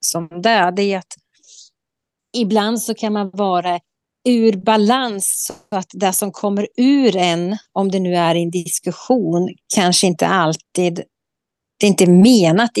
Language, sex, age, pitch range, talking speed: Swedish, female, 30-49, 175-210 Hz, 155 wpm